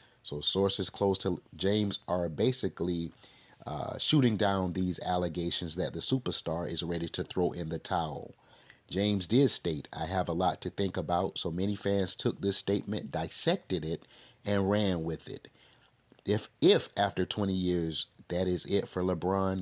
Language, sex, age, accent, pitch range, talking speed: English, male, 30-49, American, 85-105 Hz, 165 wpm